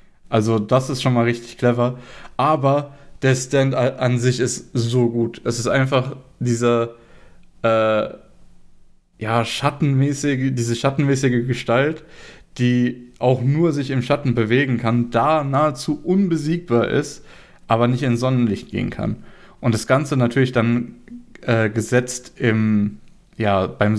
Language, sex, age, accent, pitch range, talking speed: German, male, 20-39, German, 115-135 Hz, 120 wpm